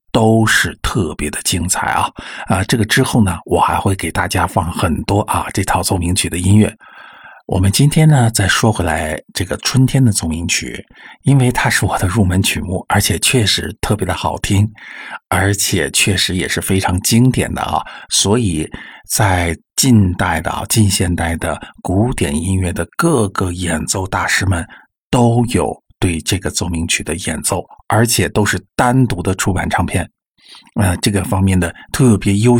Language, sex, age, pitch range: Chinese, male, 50-69, 90-110 Hz